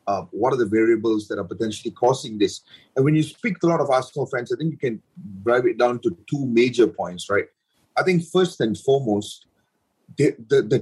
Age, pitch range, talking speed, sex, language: 30-49, 115-175 Hz, 220 wpm, male, English